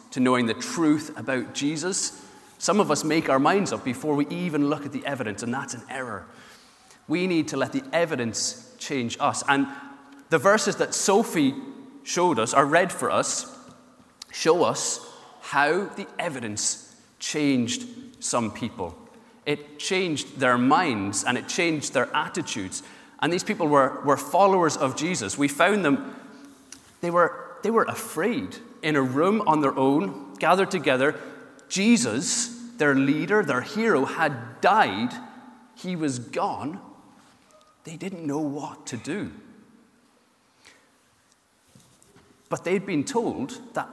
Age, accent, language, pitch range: 30-49, British, English, 150-235 Hz